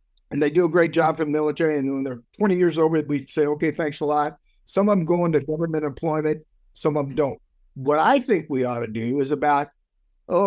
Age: 60-79